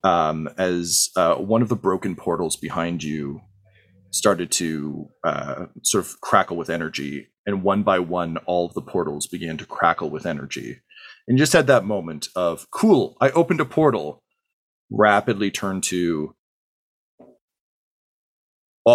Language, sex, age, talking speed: English, male, 30-49, 145 wpm